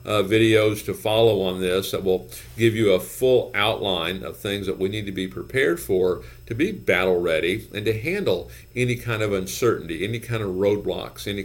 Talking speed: 200 wpm